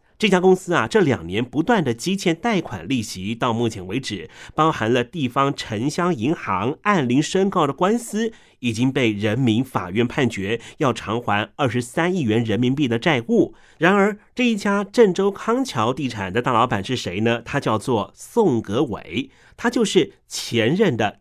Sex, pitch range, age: male, 115-180 Hz, 30-49